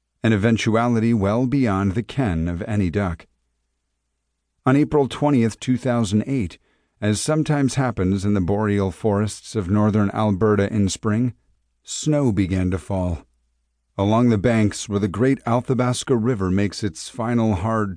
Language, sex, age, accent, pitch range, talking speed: English, male, 40-59, American, 90-125 Hz, 140 wpm